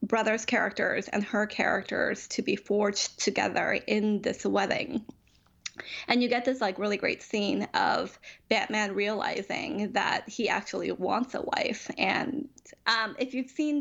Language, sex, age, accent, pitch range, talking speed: English, female, 10-29, American, 200-245 Hz, 150 wpm